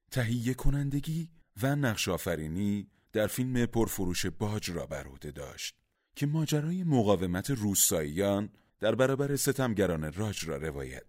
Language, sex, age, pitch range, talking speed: Persian, male, 30-49, 90-130 Hz, 115 wpm